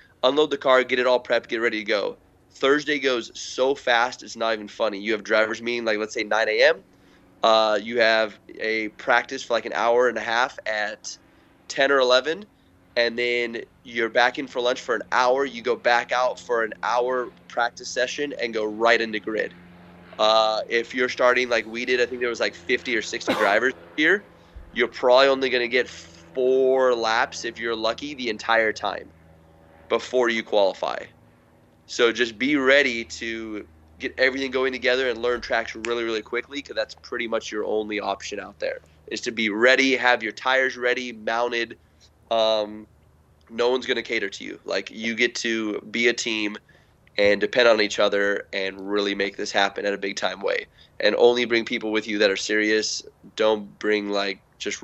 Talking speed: 195 wpm